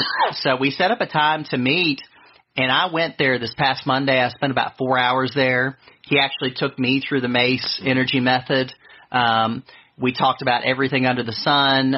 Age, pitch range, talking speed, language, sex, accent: 40-59, 120-135 Hz, 190 wpm, English, male, American